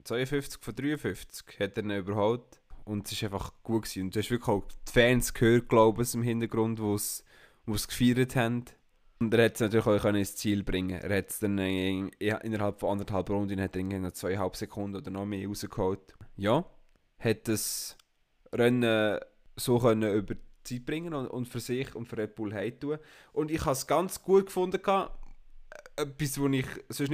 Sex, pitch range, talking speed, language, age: male, 100-125 Hz, 195 wpm, German, 20-39